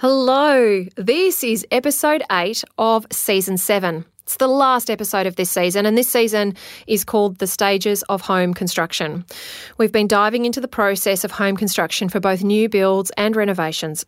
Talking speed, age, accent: 170 wpm, 30-49, Australian